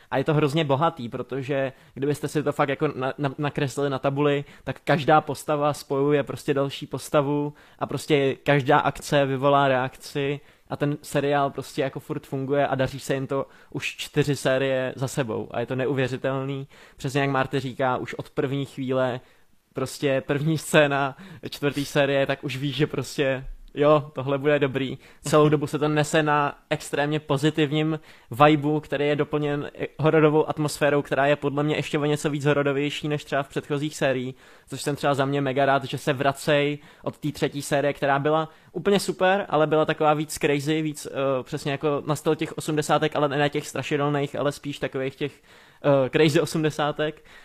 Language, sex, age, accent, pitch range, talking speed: Czech, male, 20-39, native, 135-150 Hz, 175 wpm